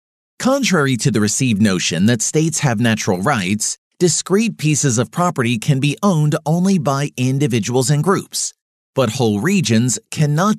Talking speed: 145 wpm